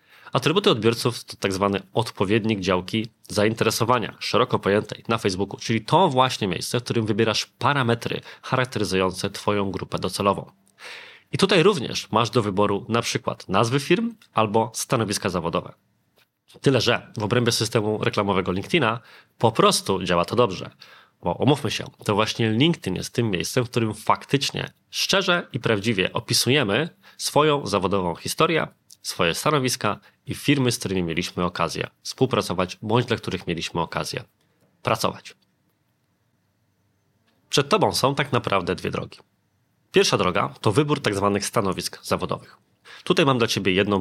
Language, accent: Polish, native